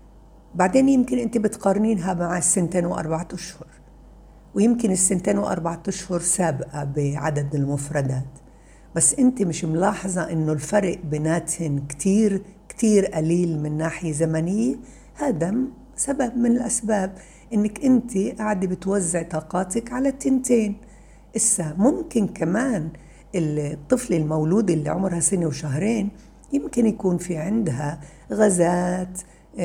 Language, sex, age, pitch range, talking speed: Arabic, female, 60-79, 165-220 Hz, 105 wpm